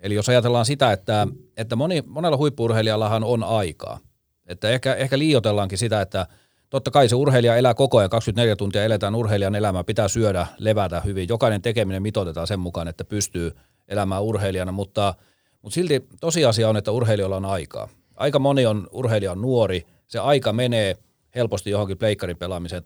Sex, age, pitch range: male, 30-49, 95-120 Hz